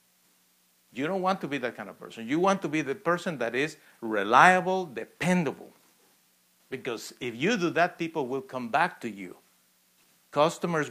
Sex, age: male, 50-69